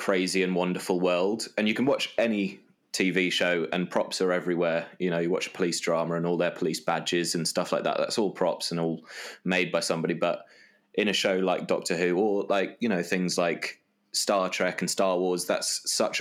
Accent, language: British, English